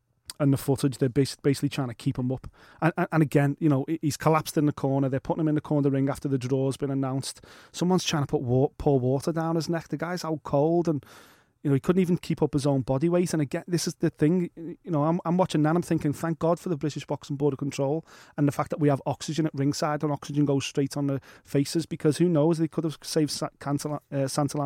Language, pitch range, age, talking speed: English, 135-160 Hz, 30-49, 260 wpm